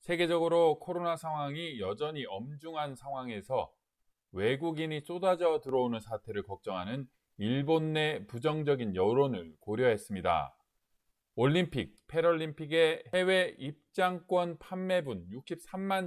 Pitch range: 130-170 Hz